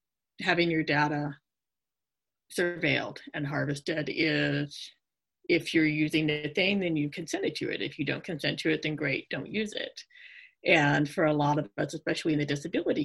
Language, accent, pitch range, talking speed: English, American, 150-210 Hz, 180 wpm